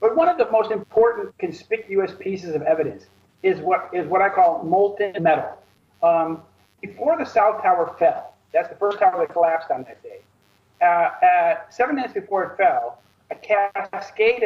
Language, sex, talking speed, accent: English, male, 175 wpm, American